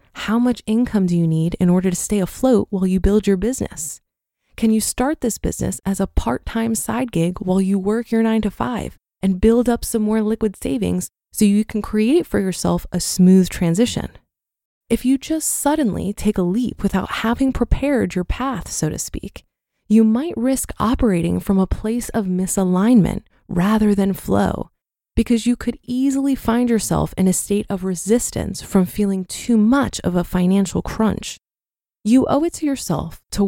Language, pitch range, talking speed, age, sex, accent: English, 185-240 Hz, 175 wpm, 20-39, female, American